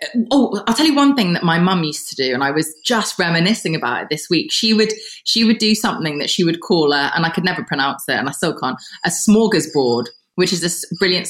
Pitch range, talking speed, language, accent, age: 155-200 Hz, 255 wpm, English, British, 20-39